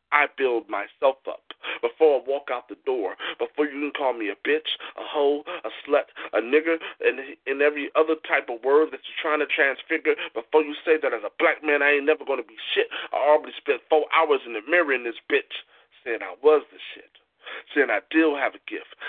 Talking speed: 225 wpm